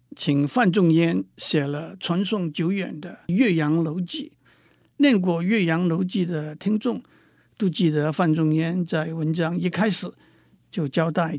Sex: male